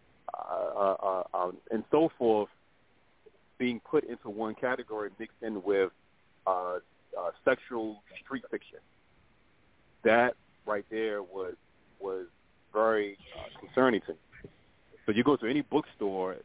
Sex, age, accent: male, 30-49, American